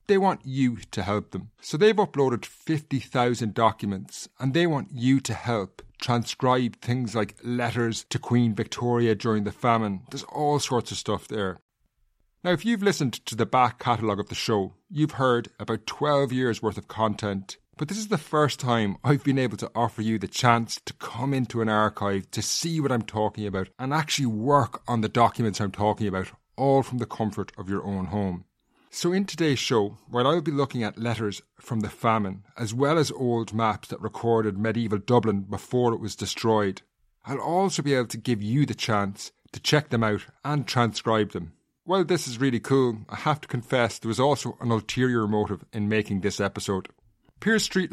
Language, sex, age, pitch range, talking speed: English, male, 30-49, 105-135 Hz, 195 wpm